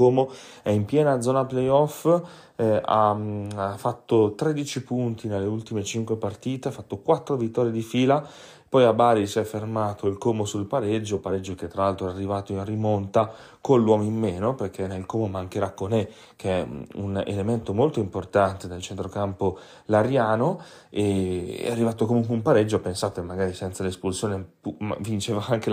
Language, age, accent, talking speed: Italian, 30-49, native, 165 wpm